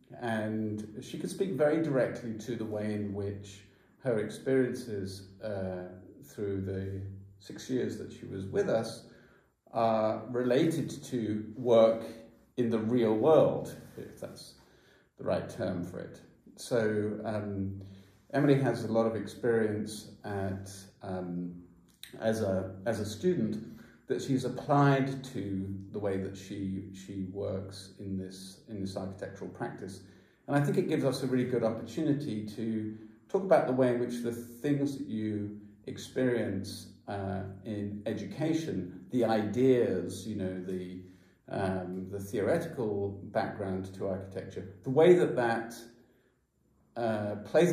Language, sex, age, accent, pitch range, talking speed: English, male, 40-59, British, 95-120 Hz, 140 wpm